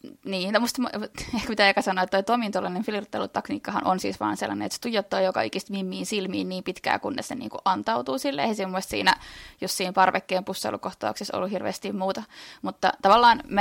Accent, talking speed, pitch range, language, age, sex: native, 175 wpm, 185-220 Hz, Finnish, 20-39, female